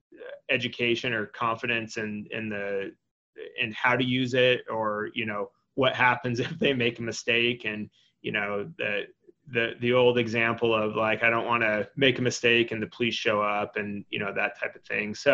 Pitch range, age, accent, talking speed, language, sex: 115-130 Hz, 30-49, American, 200 wpm, English, male